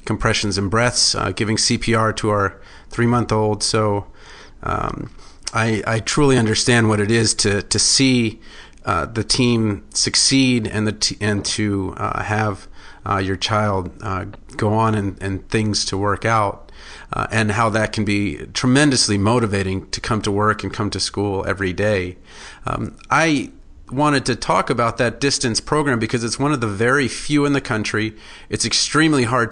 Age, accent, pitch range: 40-59, American, 105-120 Hz